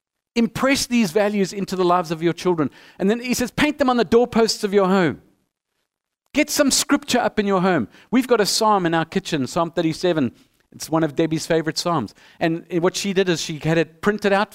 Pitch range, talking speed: 170-220 Hz, 220 wpm